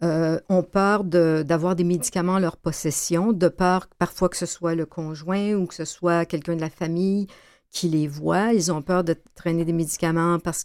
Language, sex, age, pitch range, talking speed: French, female, 60-79, 170-200 Hz, 215 wpm